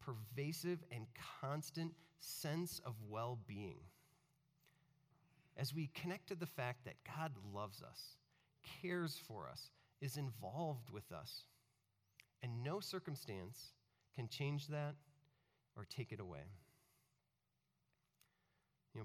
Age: 40-59